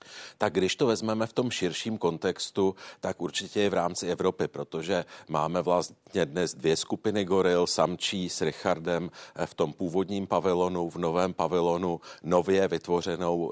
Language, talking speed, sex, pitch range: Czech, 145 wpm, male, 85-95 Hz